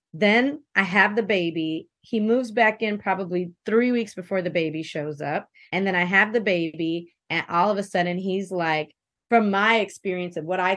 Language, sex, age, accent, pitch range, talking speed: English, female, 30-49, American, 170-215 Hz, 200 wpm